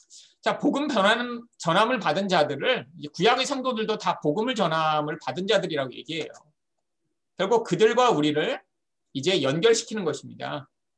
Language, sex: Korean, male